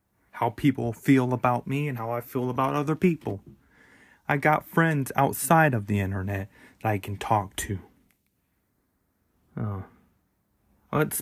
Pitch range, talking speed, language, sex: 100-120 Hz, 140 wpm, English, male